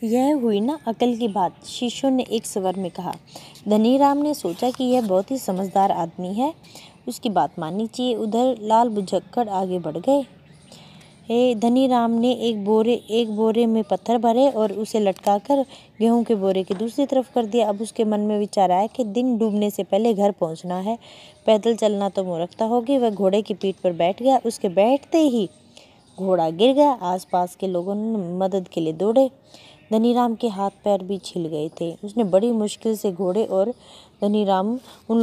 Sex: female